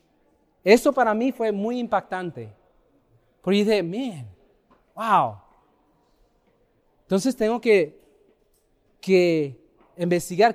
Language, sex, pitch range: Italian, male, 175-255 Hz